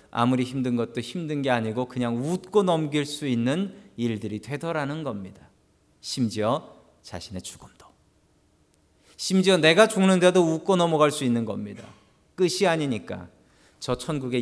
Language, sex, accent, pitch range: Korean, male, native, 120-160 Hz